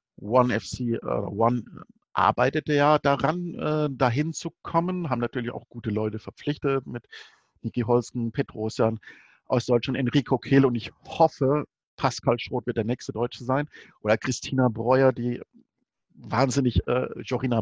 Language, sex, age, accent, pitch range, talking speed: German, male, 50-69, German, 110-130 Hz, 140 wpm